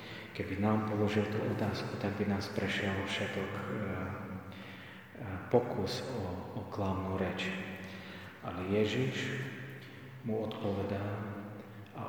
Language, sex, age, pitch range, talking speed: Slovak, male, 40-59, 100-110 Hz, 100 wpm